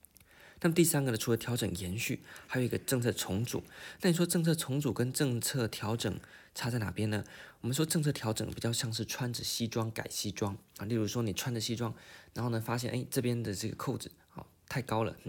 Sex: male